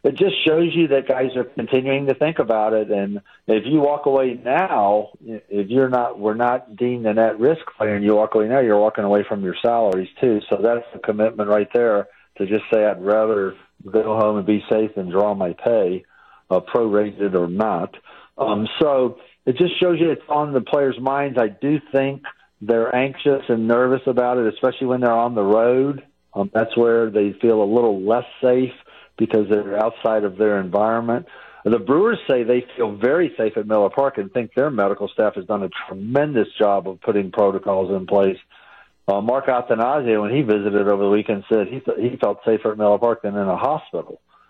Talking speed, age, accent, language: 200 wpm, 50-69, American, English